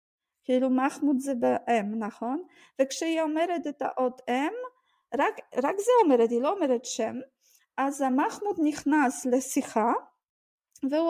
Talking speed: 125 wpm